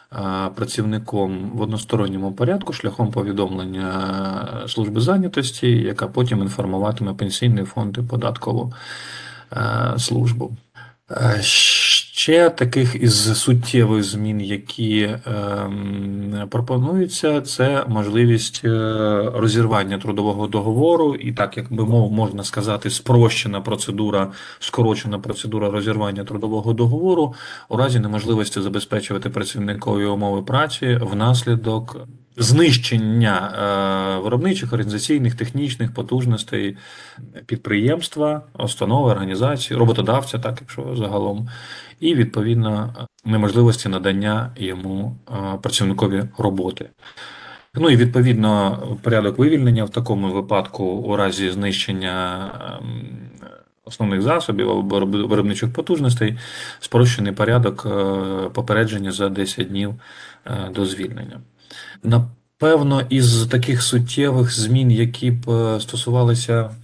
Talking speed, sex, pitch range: 90 wpm, male, 100-120 Hz